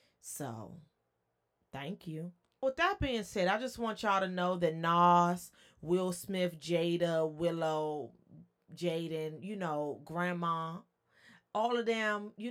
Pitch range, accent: 155-185 Hz, American